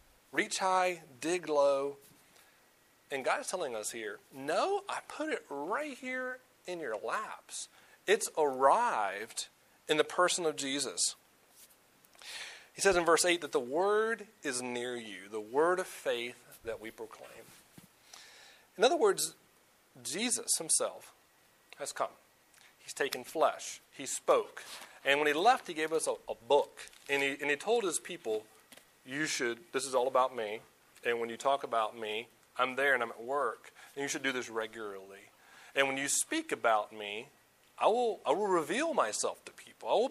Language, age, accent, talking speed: English, 40-59, American, 170 wpm